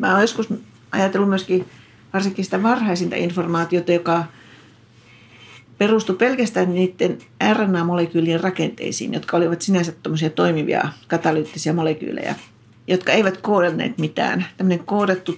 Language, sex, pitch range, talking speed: Finnish, female, 155-190 Hz, 105 wpm